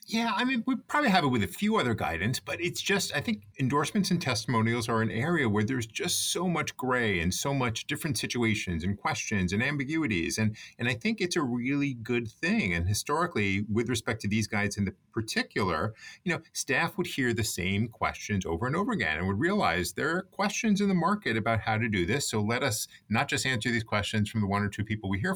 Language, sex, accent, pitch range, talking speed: English, male, American, 105-150 Hz, 230 wpm